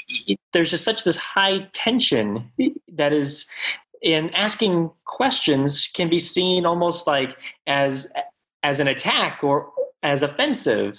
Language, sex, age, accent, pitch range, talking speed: English, male, 20-39, American, 125-175 Hz, 125 wpm